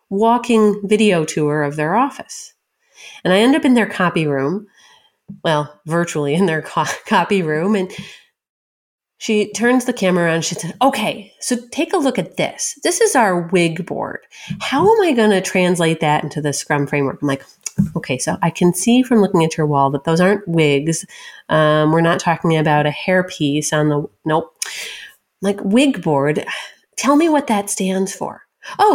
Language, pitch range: English, 165-235 Hz